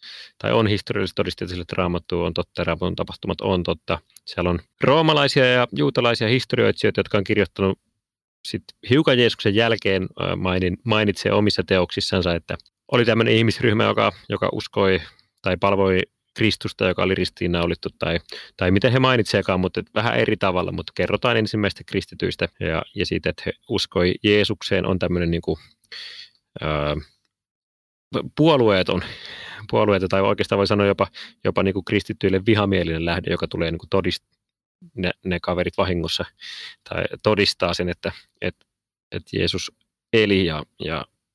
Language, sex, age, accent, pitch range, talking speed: Finnish, male, 30-49, native, 90-110 Hz, 145 wpm